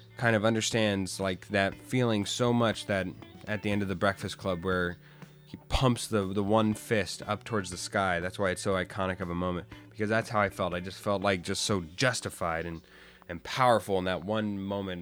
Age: 20-39